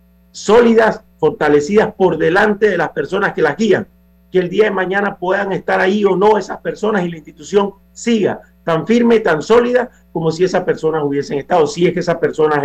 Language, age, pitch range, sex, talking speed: Spanish, 50-69, 145-200 Hz, male, 195 wpm